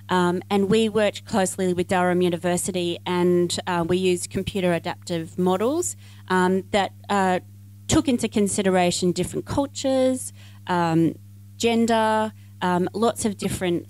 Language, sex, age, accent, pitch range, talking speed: English, female, 30-49, Australian, 165-195 Hz, 125 wpm